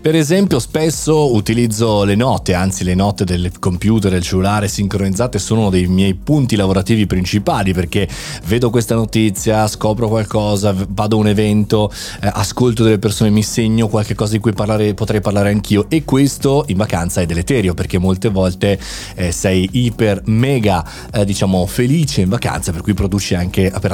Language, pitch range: Italian, 95-120 Hz